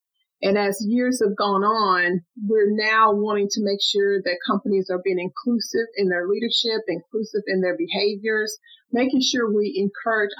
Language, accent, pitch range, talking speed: English, American, 200-250 Hz, 160 wpm